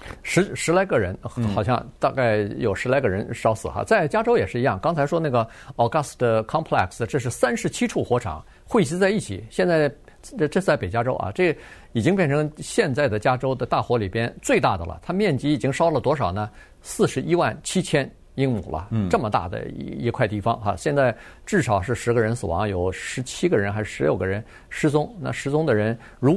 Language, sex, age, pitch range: Chinese, male, 50-69, 110-150 Hz